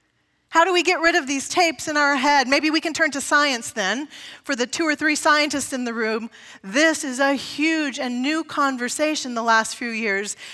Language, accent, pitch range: English, American, 230-285 Hz